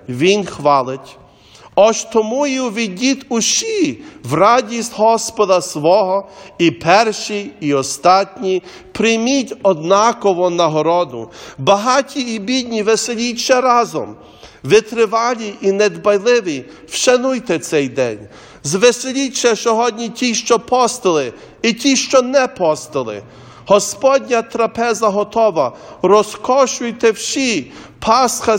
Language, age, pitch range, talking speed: English, 40-59, 170-235 Hz, 100 wpm